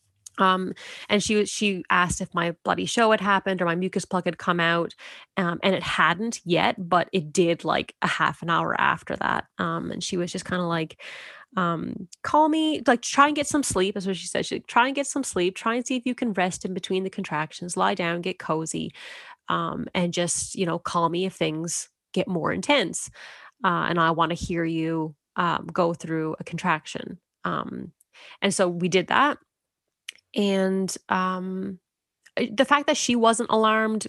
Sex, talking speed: female, 200 wpm